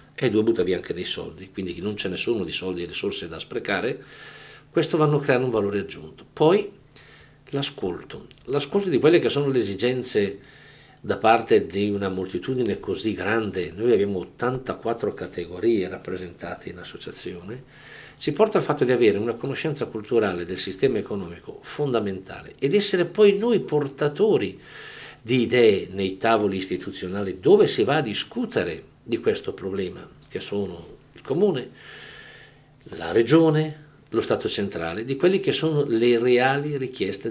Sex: male